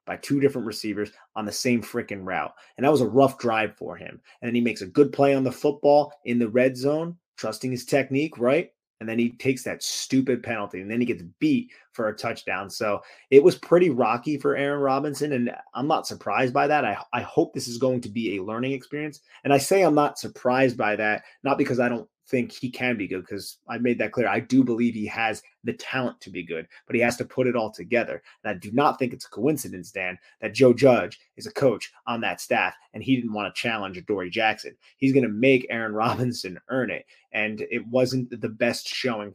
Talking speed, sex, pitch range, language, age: 235 wpm, male, 115-135 Hz, English, 30-49